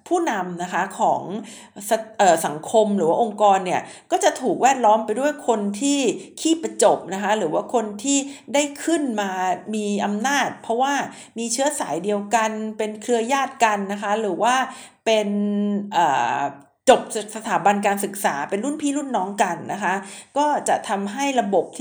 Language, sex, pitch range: Thai, female, 200-270 Hz